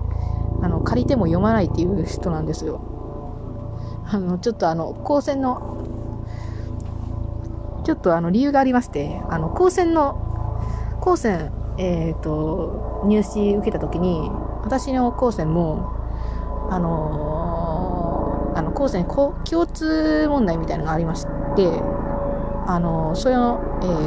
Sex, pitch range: female, 160-260 Hz